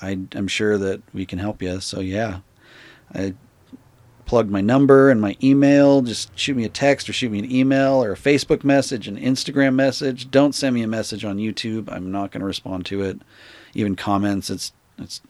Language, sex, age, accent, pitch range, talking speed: English, male, 40-59, American, 95-115 Hz, 200 wpm